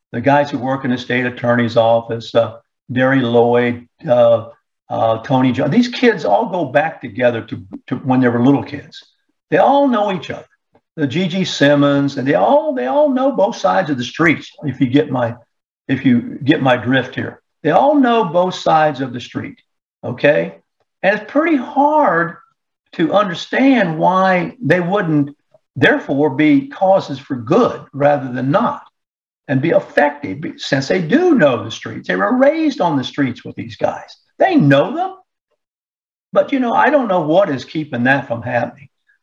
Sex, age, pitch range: male, 50-69, 130-220 Hz